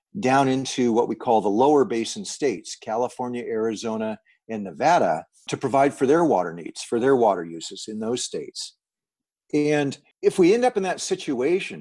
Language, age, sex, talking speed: English, 50-69, male, 175 wpm